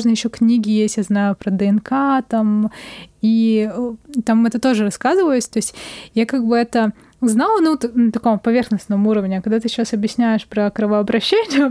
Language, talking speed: Russian, 160 wpm